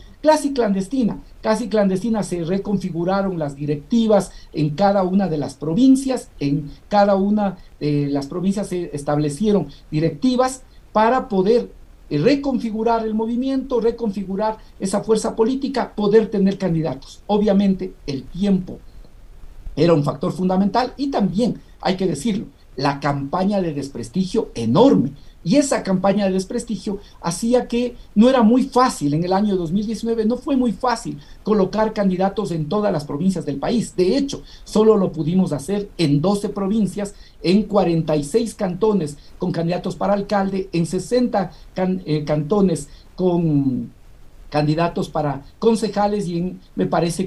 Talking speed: 135 wpm